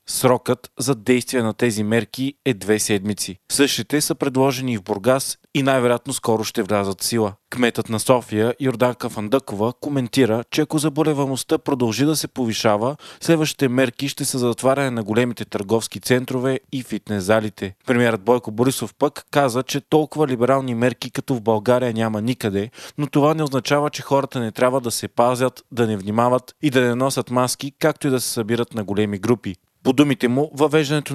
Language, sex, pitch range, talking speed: Bulgarian, male, 115-140 Hz, 175 wpm